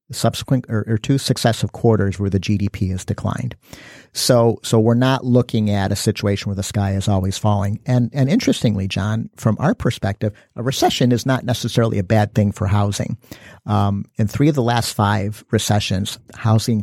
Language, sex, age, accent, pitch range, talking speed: English, male, 50-69, American, 105-120 Hz, 180 wpm